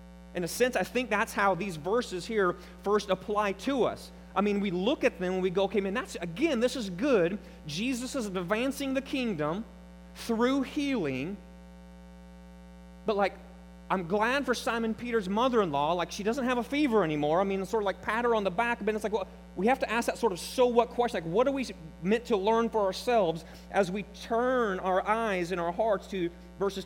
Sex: male